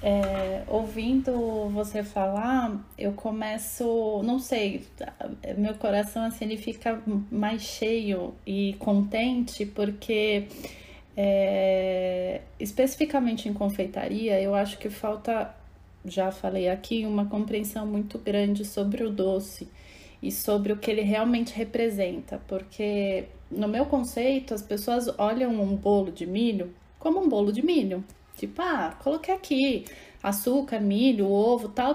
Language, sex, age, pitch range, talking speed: Portuguese, female, 20-39, 205-255 Hz, 130 wpm